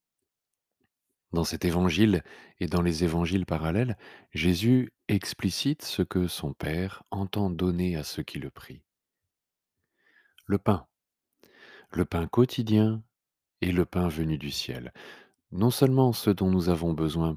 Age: 40-59